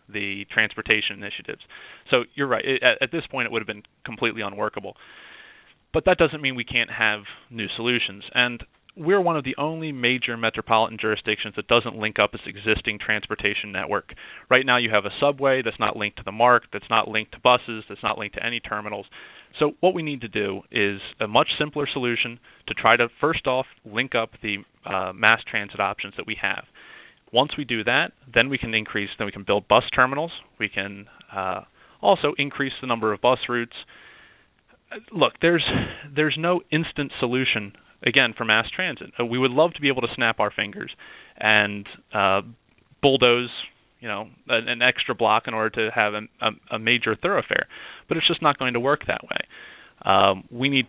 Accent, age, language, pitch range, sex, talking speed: American, 30-49, English, 105-135 Hz, male, 195 wpm